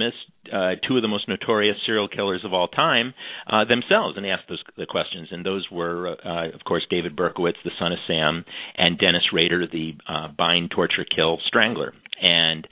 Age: 50-69